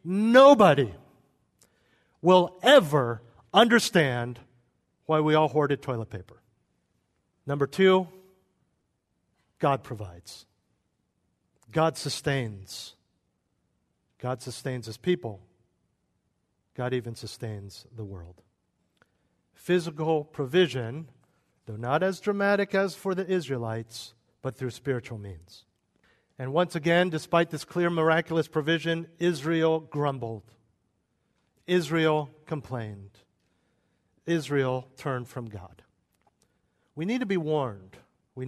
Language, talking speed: English, 95 wpm